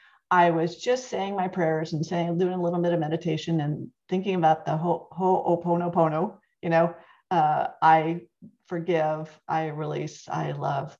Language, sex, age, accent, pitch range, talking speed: English, female, 40-59, American, 160-190 Hz, 165 wpm